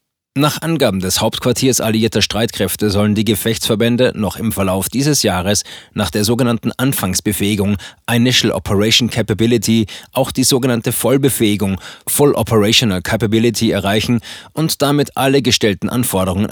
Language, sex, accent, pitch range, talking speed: German, male, German, 105-125 Hz, 125 wpm